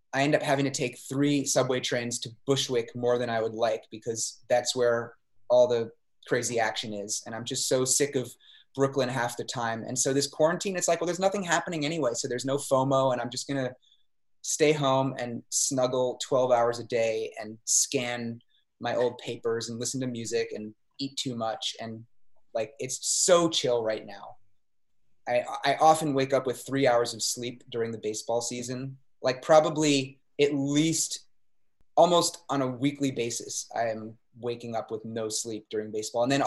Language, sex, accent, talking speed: English, male, American, 190 wpm